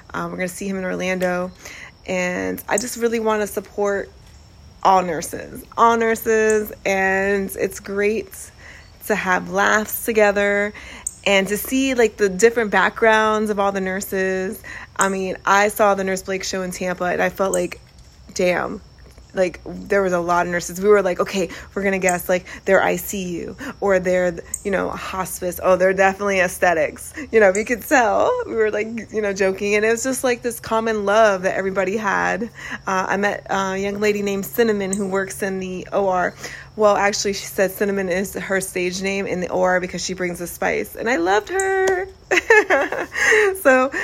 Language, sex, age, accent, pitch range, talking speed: English, female, 30-49, American, 185-220 Hz, 185 wpm